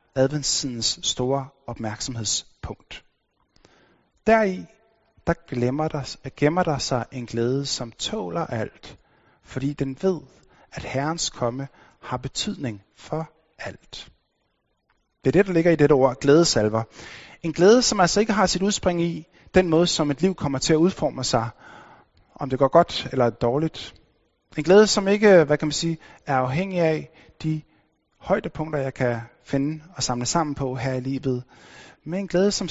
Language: Danish